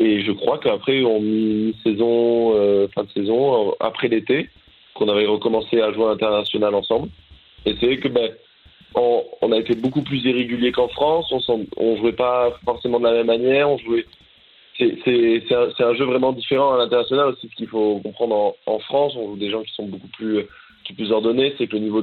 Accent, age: French, 20-39